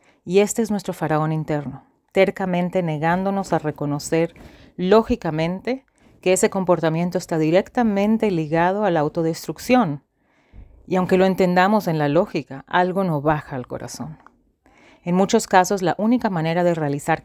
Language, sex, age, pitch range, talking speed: English, female, 40-59, 150-190 Hz, 140 wpm